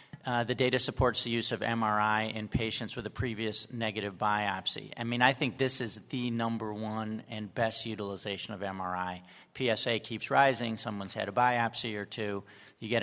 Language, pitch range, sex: English, 105-120 Hz, male